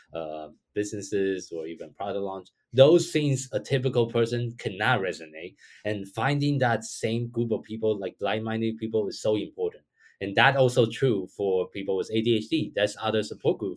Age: 20-39